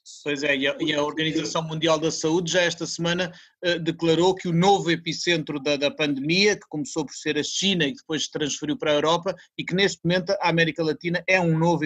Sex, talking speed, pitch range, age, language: male, 230 wpm, 165-205 Hz, 30-49, Portuguese